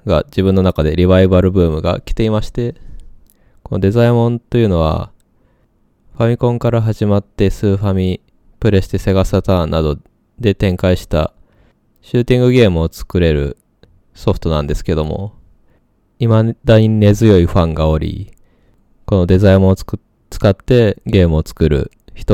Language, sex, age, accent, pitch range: Japanese, male, 20-39, native, 90-115 Hz